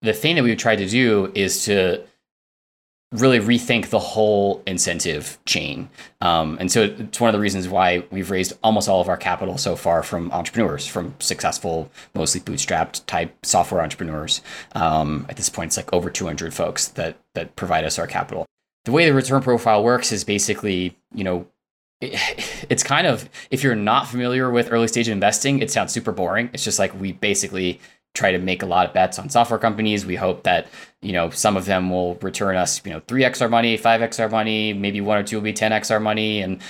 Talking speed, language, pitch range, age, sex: 205 wpm, English, 90-115 Hz, 20-39, male